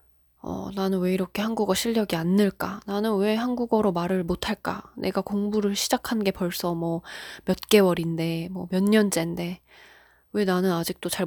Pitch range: 170-210 Hz